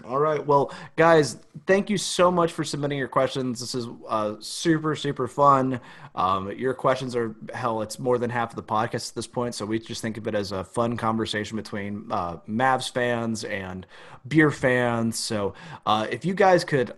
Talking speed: 200 wpm